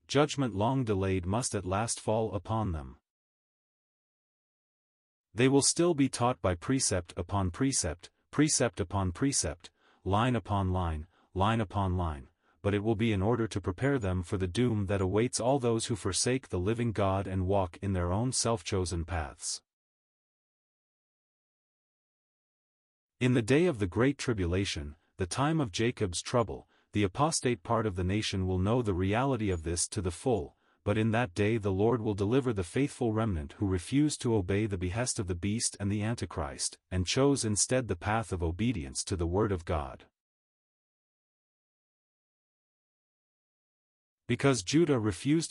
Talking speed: 160 wpm